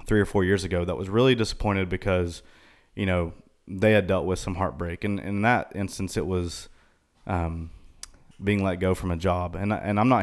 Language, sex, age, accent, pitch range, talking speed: English, male, 20-39, American, 90-105 Hz, 205 wpm